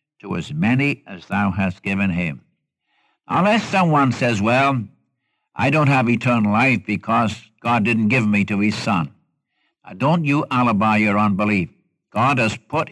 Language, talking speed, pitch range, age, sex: English, 155 wpm, 110-155 Hz, 60-79, male